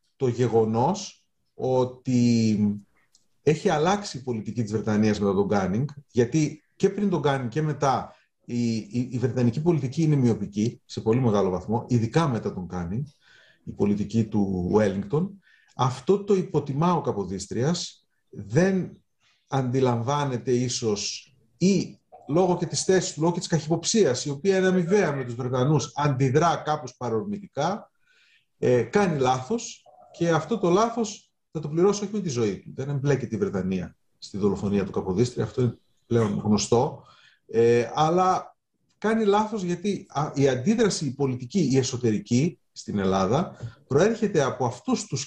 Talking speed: 145 wpm